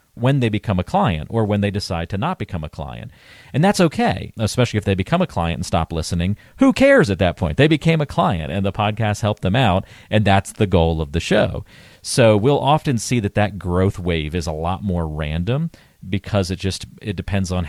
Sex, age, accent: male, 40-59, American